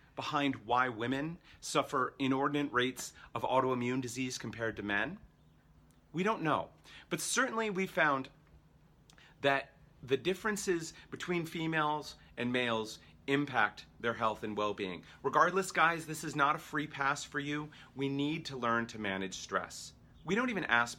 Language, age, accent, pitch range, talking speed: English, 40-59, American, 115-160 Hz, 150 wpm